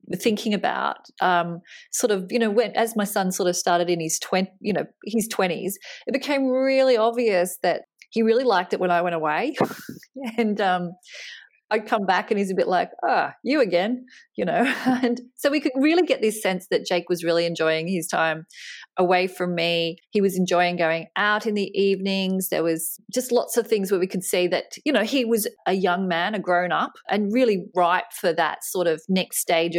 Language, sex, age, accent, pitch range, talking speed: English, female, 30-49, Australian, 175-230 Hz, 210 wpm